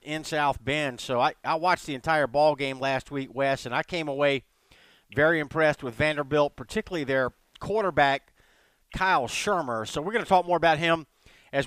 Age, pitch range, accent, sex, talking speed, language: 50-69, 145-170 Hz, American, male, 185 wpm, English